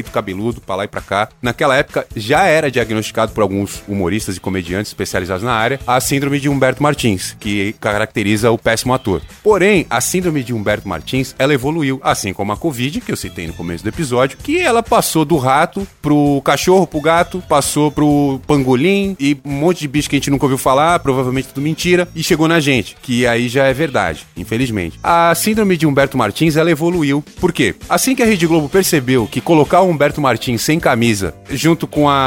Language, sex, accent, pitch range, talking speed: Portuguese, male, Brazilian, 115-150 Hz, 200 wpm